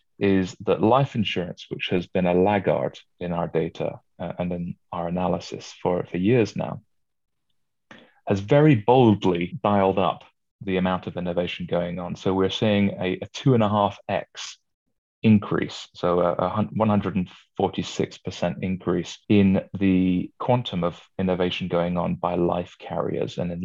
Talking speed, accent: 140 wpm, British